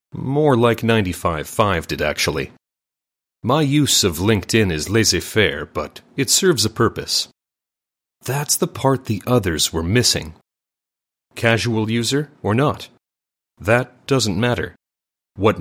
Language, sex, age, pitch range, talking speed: English, male, 30-49, 95-130 Hz, 120 wpm